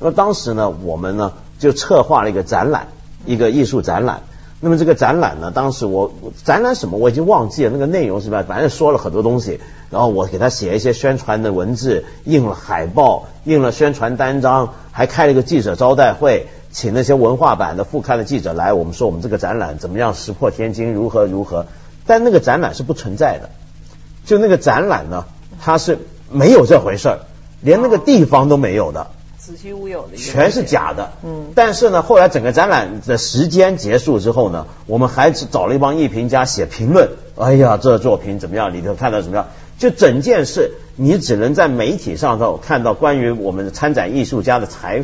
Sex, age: male, 50-69